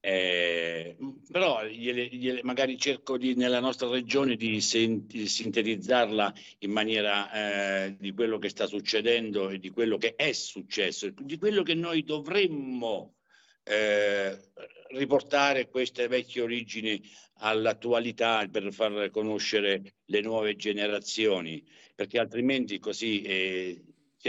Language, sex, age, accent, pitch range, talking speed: Italian, male, 60-79, native, 100-125 Hz, 115 wpm